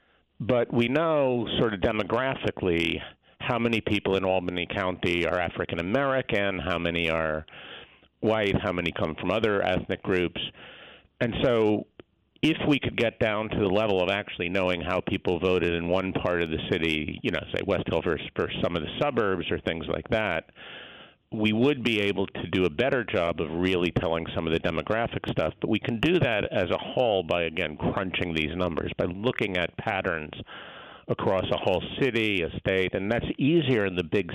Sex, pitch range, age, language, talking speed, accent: male, 90-110 Hz, 50-69, English, 190 wpm, American